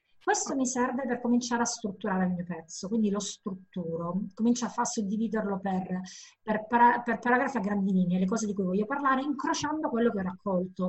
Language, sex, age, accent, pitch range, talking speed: Italian, female, 20-39, native, 185-235 Hz, 185 wpm